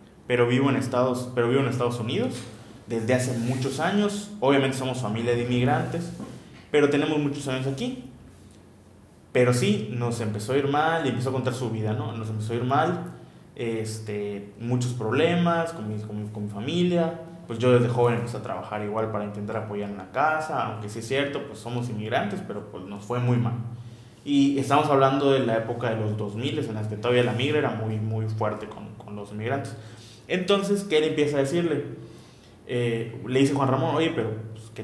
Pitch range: 110-135 Hz